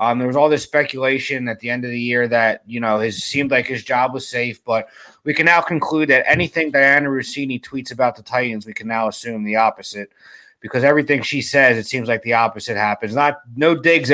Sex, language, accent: male, English, American